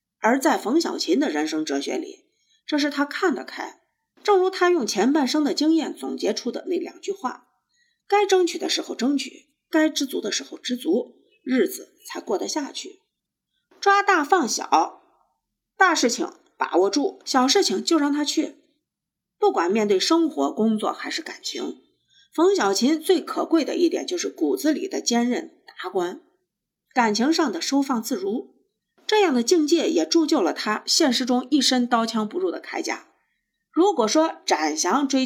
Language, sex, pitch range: Chinese, female, 265-360 Hz